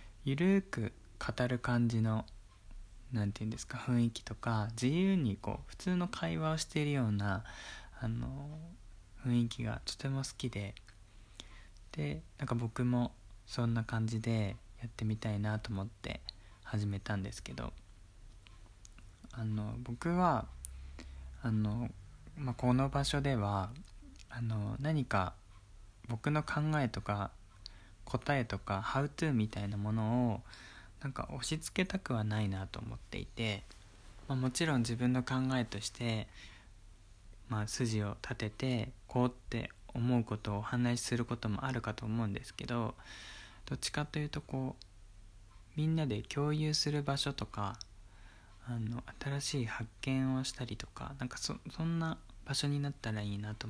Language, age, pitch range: Japanese, 20-39, 100-130 Hz